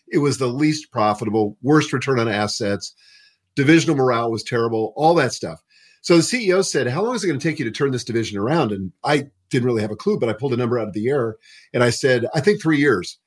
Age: 50-69